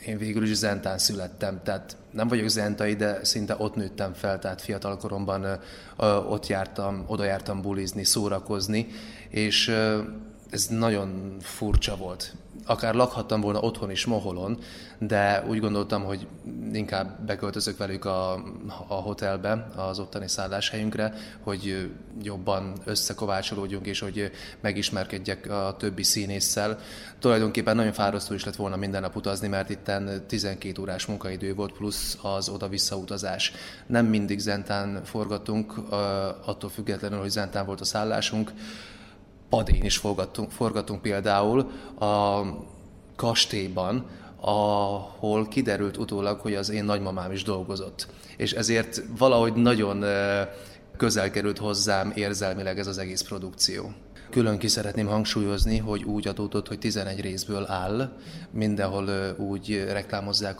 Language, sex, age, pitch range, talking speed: Hungarian, male, 20-39, 100-110 Hz, 125 wpm